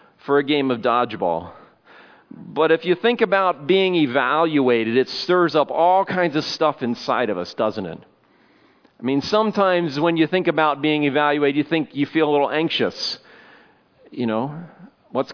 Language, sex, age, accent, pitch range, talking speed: English, male, 40-59, American, 140-180 Hz, 170 wpm